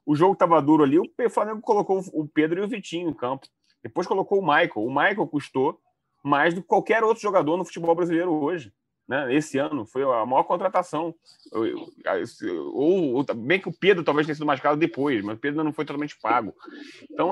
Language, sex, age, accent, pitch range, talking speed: Portuguese, male, 30-49, Brazilian, 145-190 Hz, 205 wpm